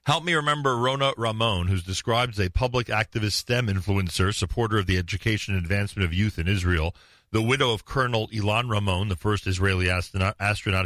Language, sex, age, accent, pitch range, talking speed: English, male, 40-59, American, 90-105 Hz, 180 wpm